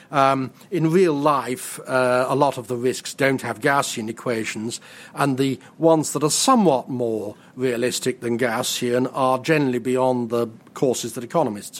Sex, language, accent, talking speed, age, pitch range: male, English, British, 160 wpm, 40-59, 125-160 Hz